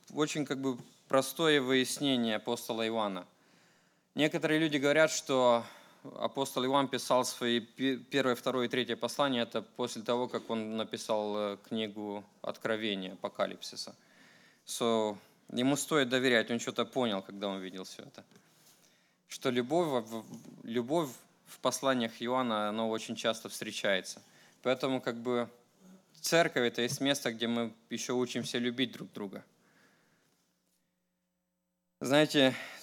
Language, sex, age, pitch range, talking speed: English, male, 20-39, 115-135 Hz, 120 wpm